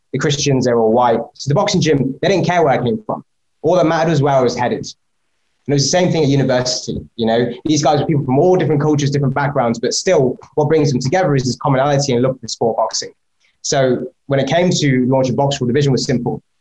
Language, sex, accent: English, male, British